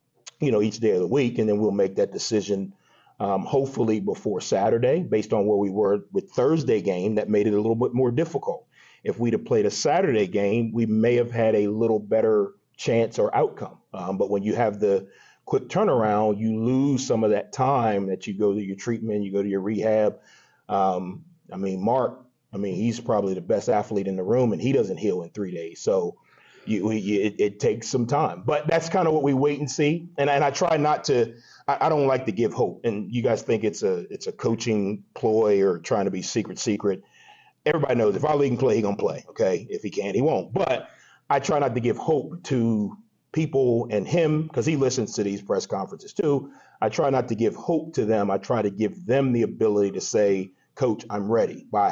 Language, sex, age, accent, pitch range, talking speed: English, male, 30-49, American, 105-140 Hz, 225 wpm